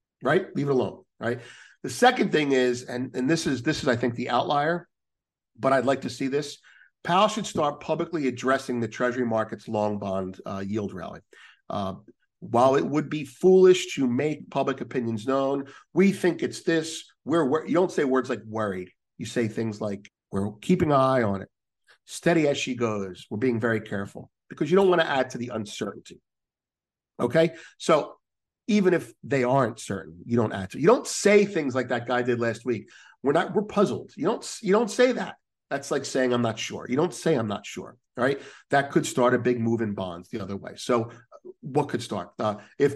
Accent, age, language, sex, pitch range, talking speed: American, 50-69, English, male, 110-150 Hz, 205 wpm